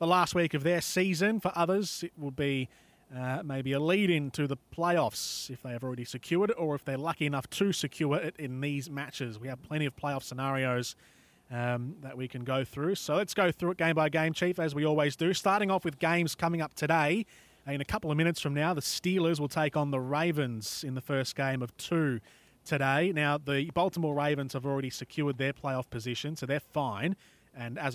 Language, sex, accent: English, male, Australian